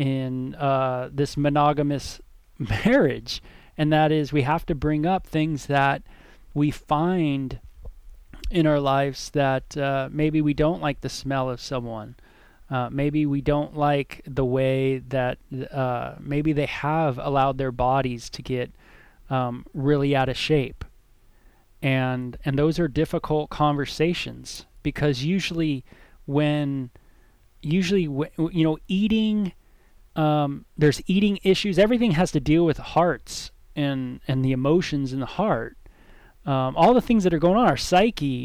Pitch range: 135-175 Hz